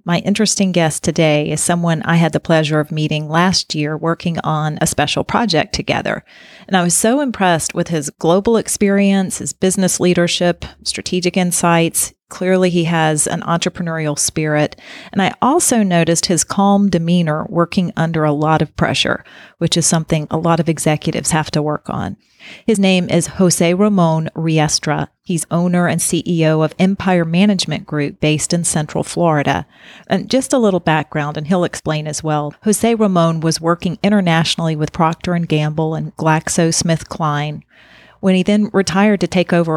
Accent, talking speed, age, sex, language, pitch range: American, 165 wpm, 40-59, female, English, 155-185 Hz